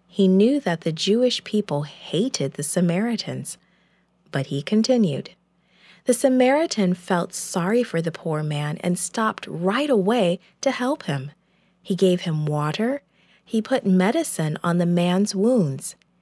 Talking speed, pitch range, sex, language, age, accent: 140 wpm, 175-220 Hz, female, English, 40-59, American